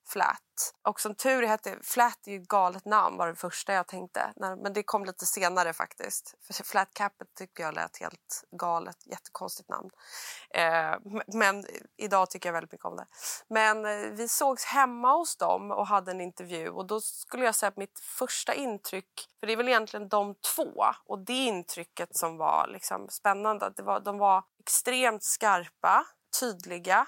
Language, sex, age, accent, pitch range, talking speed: Swedish, female, 20-39, native, 190-235 Hz, 175 wpm